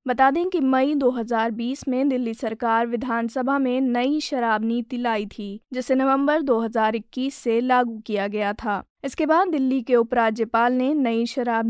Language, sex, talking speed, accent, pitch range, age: Hindi, female, 160 wpm, native, 230-270 Hz, 20-39